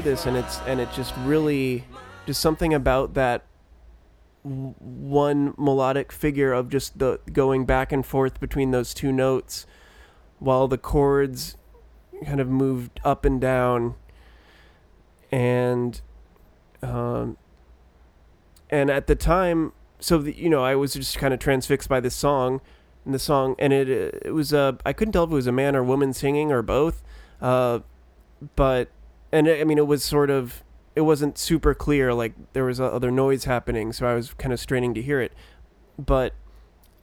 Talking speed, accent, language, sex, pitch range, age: 170 wpm, American, English, male, 115-140 Hz, 30-49